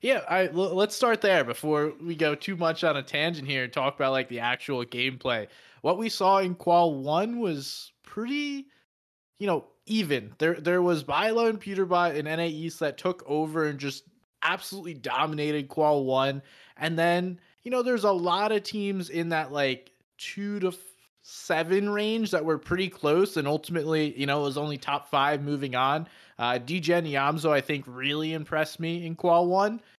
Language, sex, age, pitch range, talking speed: English, male, 20-39, 140-175 Hz, 185 wpm